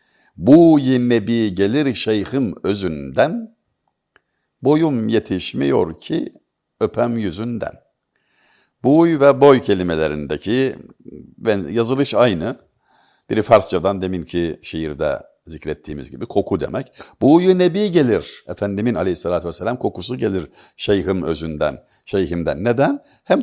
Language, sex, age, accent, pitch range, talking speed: Turkish, male, 60-79, native, 95-150 Hz, 100 wpm